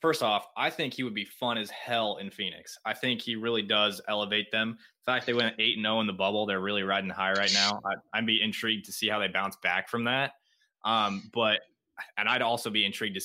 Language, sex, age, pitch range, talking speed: English, male, 20-39, 100-120 Hz, 250 wpm